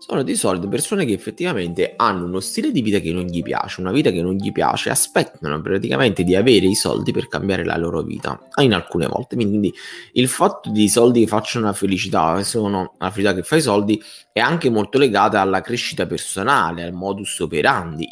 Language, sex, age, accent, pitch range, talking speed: Italian, male, 20-39, native, 95-120 Hz, 200 wpm